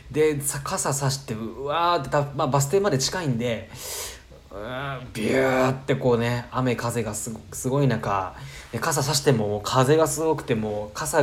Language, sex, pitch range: Japanese, male, 115-145 Hz